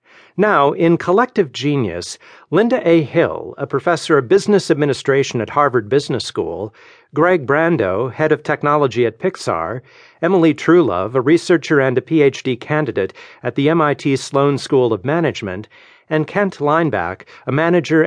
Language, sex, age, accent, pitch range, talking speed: English, male, 50-69, American, 135-170 Hz, 145 wpm